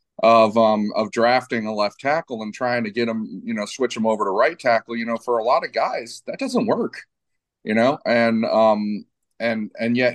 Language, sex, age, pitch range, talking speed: English, male, 30-49, 105-120 Hz, 220 wpm